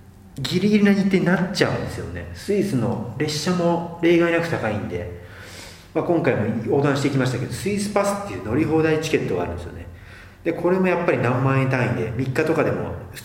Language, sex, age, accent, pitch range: Japanese, male, 40-59, native, 100-135 Hz